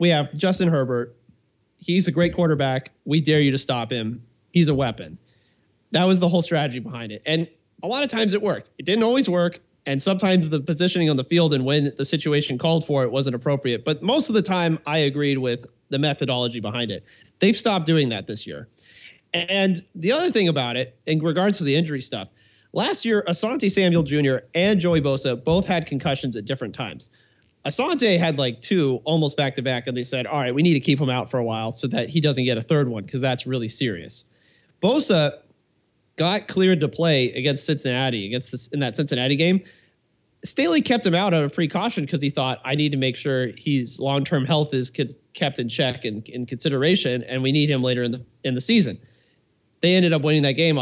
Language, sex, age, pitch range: English, male, 30-49, 130-170 Hz